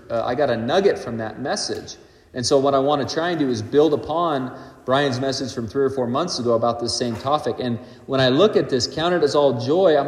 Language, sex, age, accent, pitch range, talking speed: English, male, 40-59, American, 120-170 Hz, 260 wpm